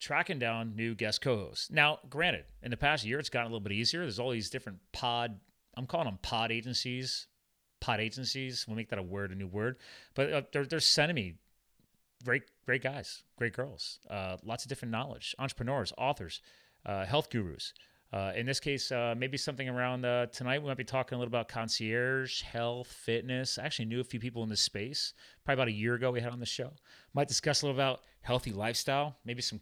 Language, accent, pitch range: English, American, 115-140 Hz